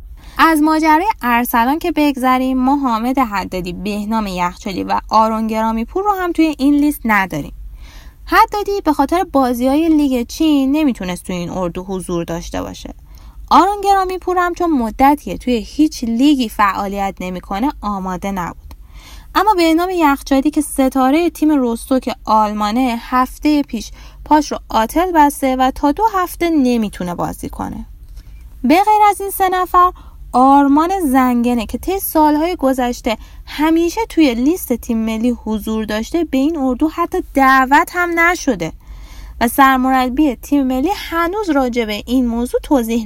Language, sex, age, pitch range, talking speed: Persian, female, 10-29, 220-315 Hz, 140 wpm